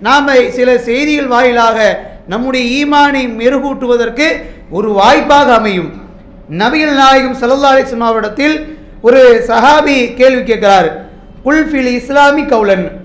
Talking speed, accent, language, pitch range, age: 120 wpm, Indian, English, 215-275 Hz, 50-69